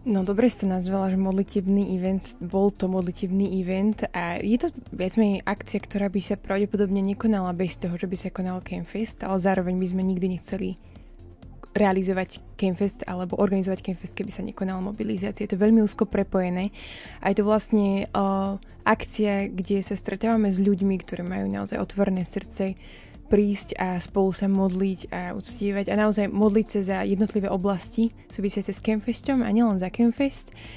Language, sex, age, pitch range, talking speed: Slovak, female, 20-39, 190-205 Hz, 165 wpm